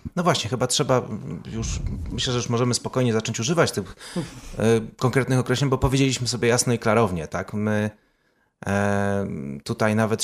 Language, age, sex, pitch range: Polish, 30-49, male, 95-120 Hz